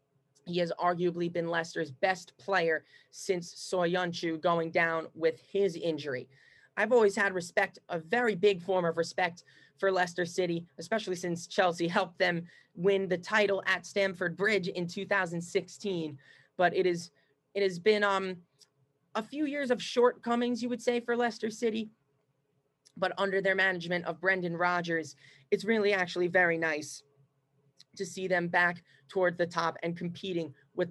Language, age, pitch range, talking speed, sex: English, 20-39, 165-205 Hz, 155 wpm, male